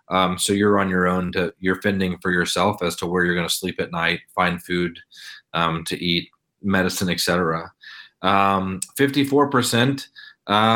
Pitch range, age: 95-115 Hz, 30-49